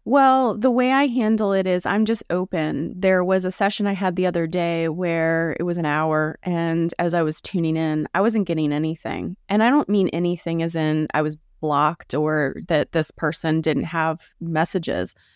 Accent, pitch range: American, 165-195 Hz